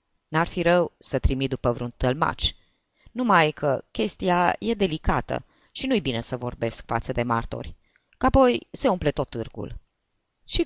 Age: 20-39